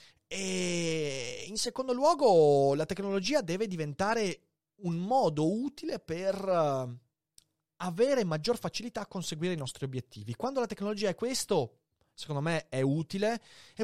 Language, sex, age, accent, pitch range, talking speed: Italian, male, 30-49, native, 130-210 Hz, 130 wpm